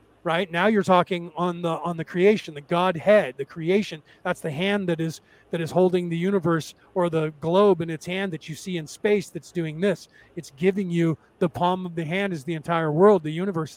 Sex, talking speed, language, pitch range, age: male, 220 wpm, English, 165-190 Hz, 40-59